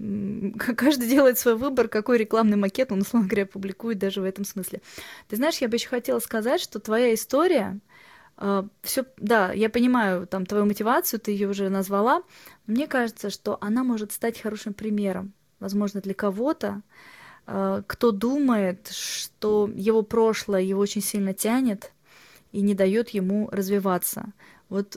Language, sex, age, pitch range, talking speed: Russian, female, 20-39, 195-235 Hz, 155 wpm